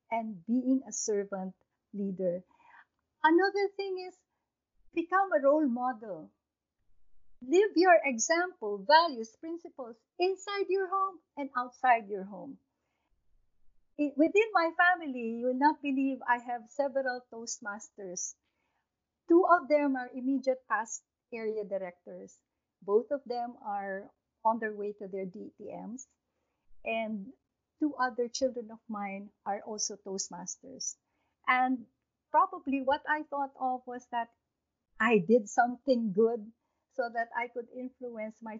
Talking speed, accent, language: 125 wpm, Filipino, English